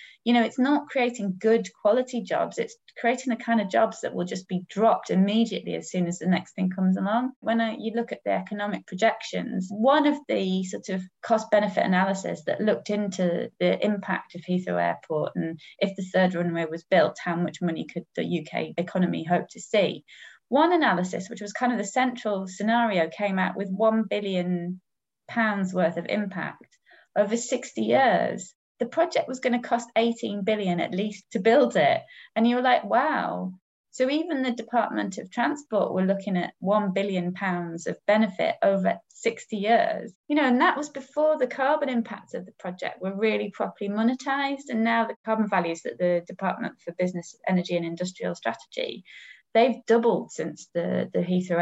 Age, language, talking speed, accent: 20-39, English, 185 wpm, British